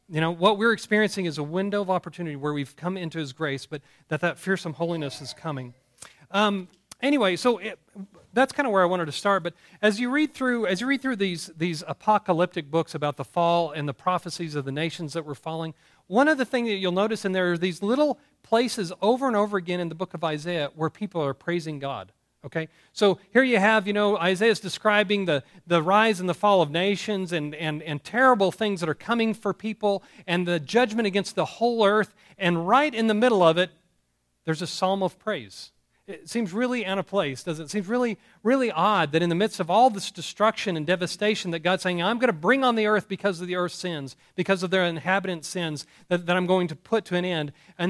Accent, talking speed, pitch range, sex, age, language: American, 235 wpm, 165-210 Hz, male, 40-59, English